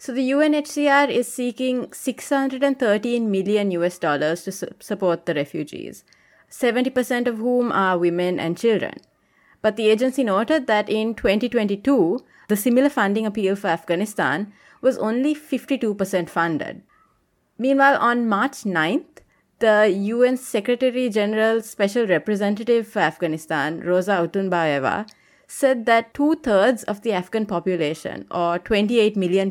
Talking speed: 130 wpm